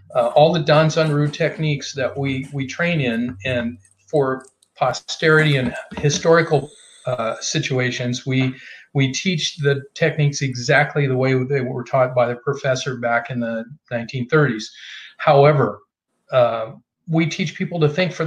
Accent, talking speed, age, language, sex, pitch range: American, 145 wpm, 40-59, English, male, 135-170 Hz